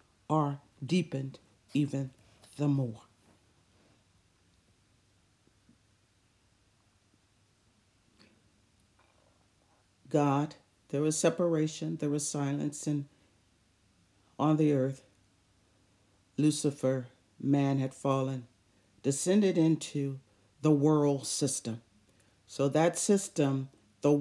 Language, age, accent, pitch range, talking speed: English, 60-79, American, 105-145 Hz, 70 wpm